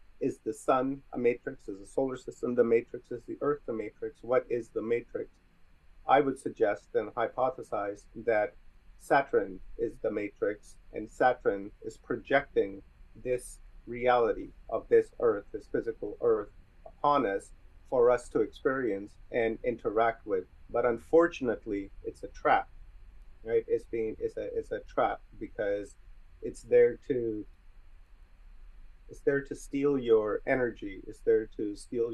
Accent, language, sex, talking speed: American, English, male, 140 wpm